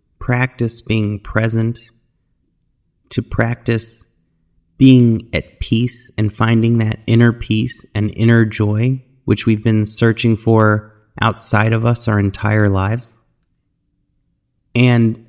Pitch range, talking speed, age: 105-125 Hz, 110 wpm, 30-49